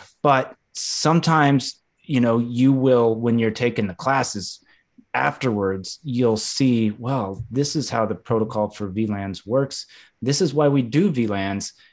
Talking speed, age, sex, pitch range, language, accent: 145 wpm, 30-49, male, 110-130 Hz, English, American